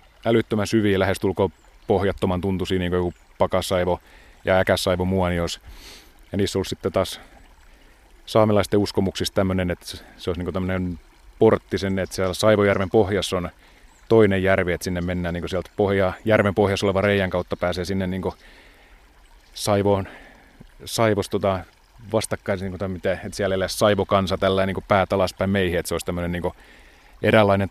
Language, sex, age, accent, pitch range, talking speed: Finnish, male, 30-49, native, 90-100 Hz, 150 wpm